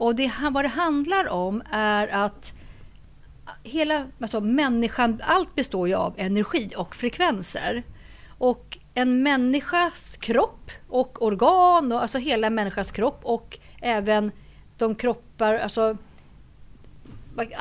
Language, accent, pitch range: Swedish, native, 210-270 Hz